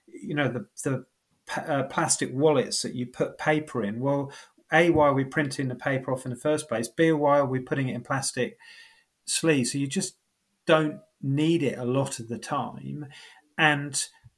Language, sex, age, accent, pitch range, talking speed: English, male, 30-49, British, 125-145 Hz, 190 wpm